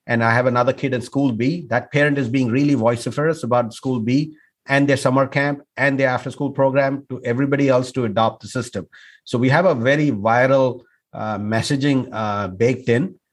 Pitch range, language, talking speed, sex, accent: 115-135 Hz, English, 195 wpm, male, Indian